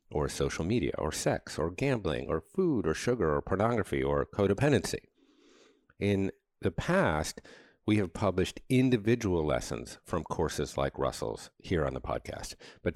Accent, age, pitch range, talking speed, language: American, 50-69, 80-105 Hz, 150 wpm, English